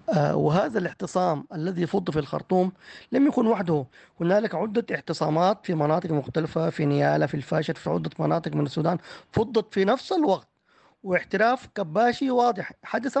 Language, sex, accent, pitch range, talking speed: English, male, Lebanese, 160-190 Hz, 145 wpm